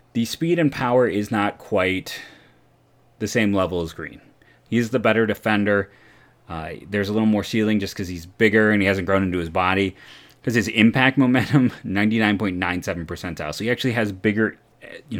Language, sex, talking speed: English, male, 180 wpm